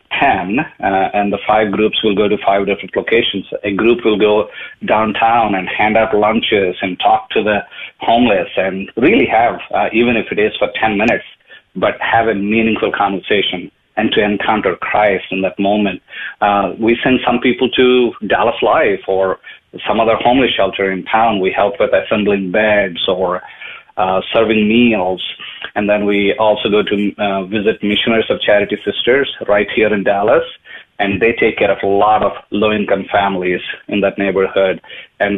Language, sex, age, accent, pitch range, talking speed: English, male, 30-49, Indian, 100-110 Hz, 175 wpm